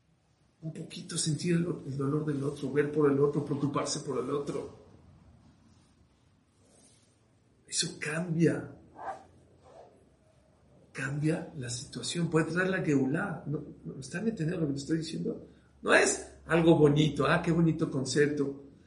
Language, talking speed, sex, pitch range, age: English, 135 wpm, male, 130-155 Hz, 50-69